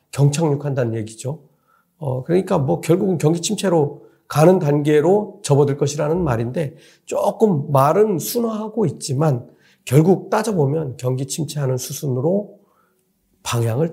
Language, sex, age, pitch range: Korean, male, 40-59, 125-180 Hz